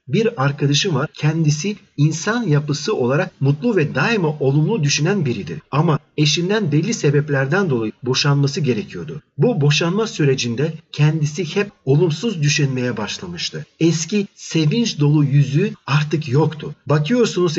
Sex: male